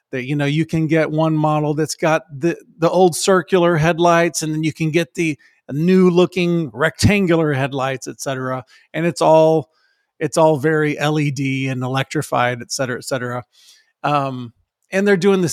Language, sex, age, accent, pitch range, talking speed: English, male, 40-59, American, 140-170 Hz, 175 wpm